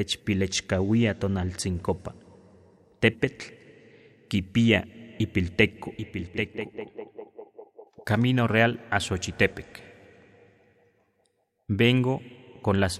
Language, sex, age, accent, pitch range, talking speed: Spanish, male, 30-49, Mexican, 95-115 Hz, 50 wpm